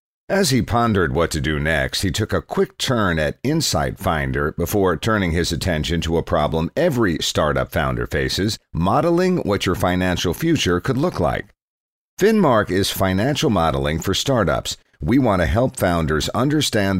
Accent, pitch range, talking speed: American, 80-110 Hz, 160 wpm